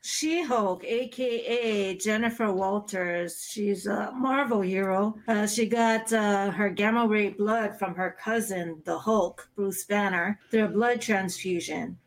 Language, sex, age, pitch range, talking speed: English, female, 40-59, 190-225 Hz, 135 wpm